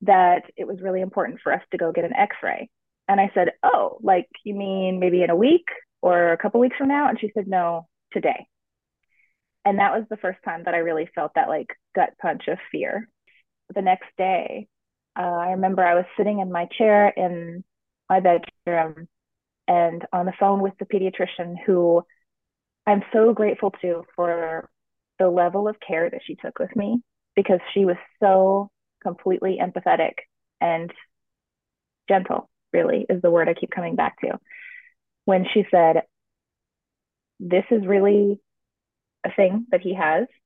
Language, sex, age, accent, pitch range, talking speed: English, female, 20-39, American, 175-210 Hz, 170 wpm